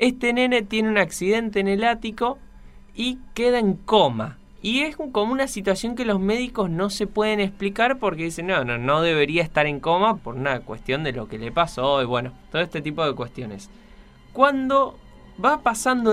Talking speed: 190 wpm